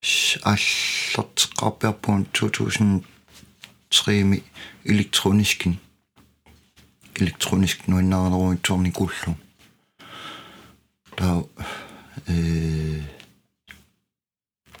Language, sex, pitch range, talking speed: Danish, male, 90-105 Hz, 65 wpm